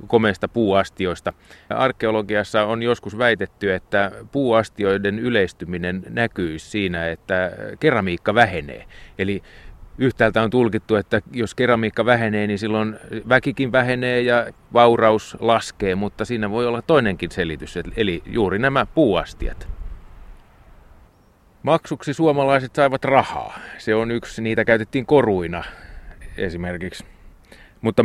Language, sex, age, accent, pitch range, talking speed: Finnish, male, 30-49, native, 90-115 Hz, 110 wpm